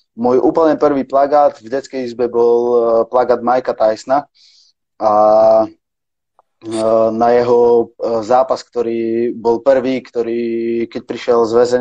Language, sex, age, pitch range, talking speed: Czech, male, 20-39, 115-130 Hz, 110 wpm